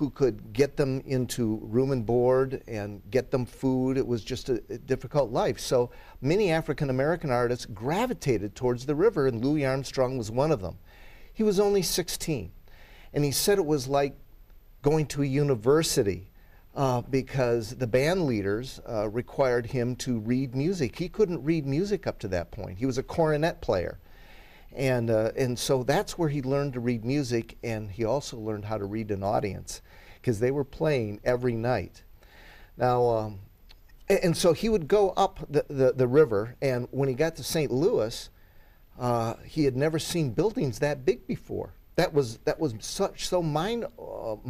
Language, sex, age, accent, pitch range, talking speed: English, male, 50-69, American, 115-150 Hz, 180 wpm